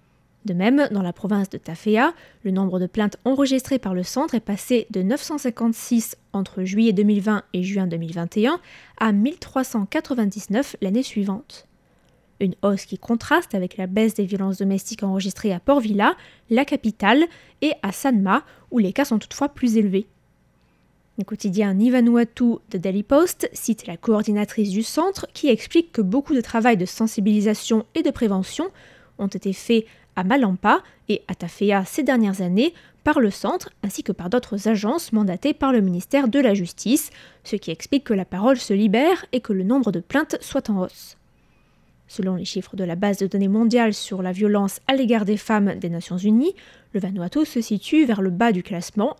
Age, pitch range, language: 20-39, 195-250 Hz, French